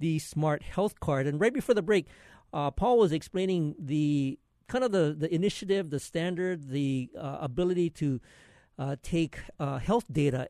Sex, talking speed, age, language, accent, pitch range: male, 170 wpm, 50-69, English, American, 135-170 Hz